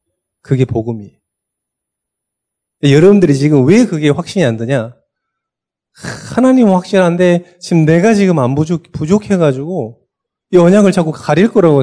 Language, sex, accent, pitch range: Korean, male, native, 125-200 Hz